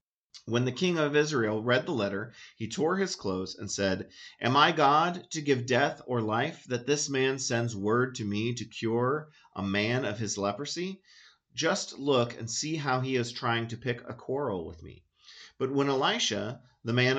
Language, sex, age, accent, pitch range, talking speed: English, male, 40-59, American, 110-140 Hz, 190 wpm